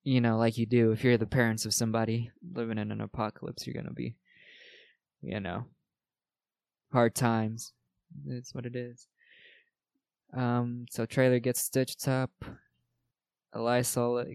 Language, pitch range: English, 115-135 Hz